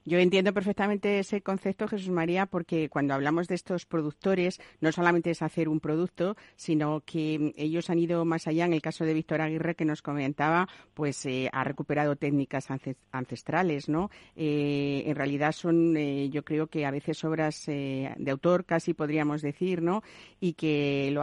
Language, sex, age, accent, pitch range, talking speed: Spanish, female, 50-69, Spanish, 145-170 Hz, 180 wpm